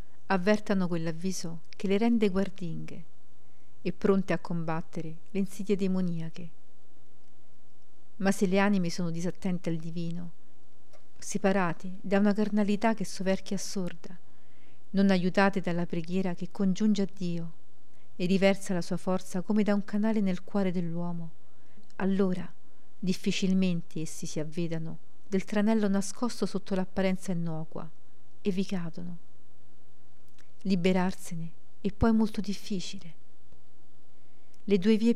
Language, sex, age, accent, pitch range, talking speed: Italian, female, 40-59, native, 170-200 Hz, 120 wpm